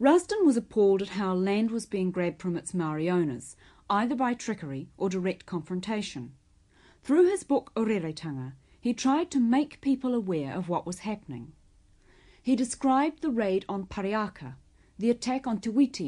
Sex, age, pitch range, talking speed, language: female, 40-59, 155-235 Hz, 170 wpm, English